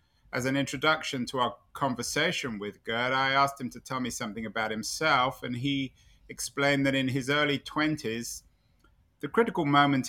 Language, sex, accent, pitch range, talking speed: English, male, British, 115-145 Hz, 165 wpm